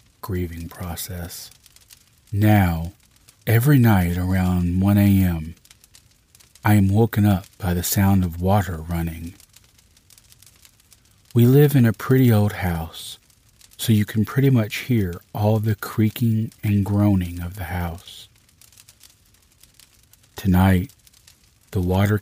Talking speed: 115 wpm